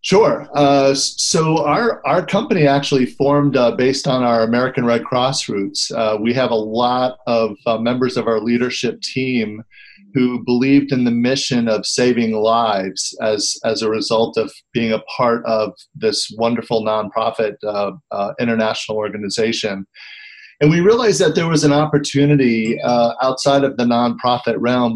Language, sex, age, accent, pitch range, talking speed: English, male, 40-59, American, 115-135 Hz, 160 wpm